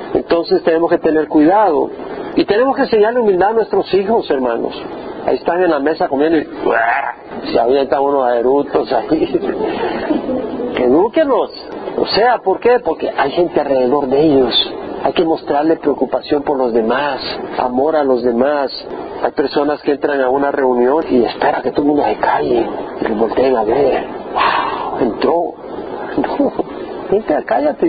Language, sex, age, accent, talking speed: Spanish, male, 50-69, Mexican, 155 wpm